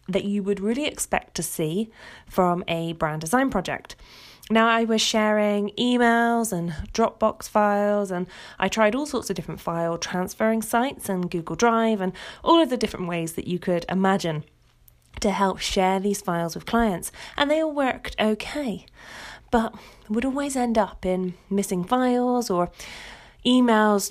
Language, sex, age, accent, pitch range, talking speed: English, female, 20-39, British, 180-225 Hz, 160 wpm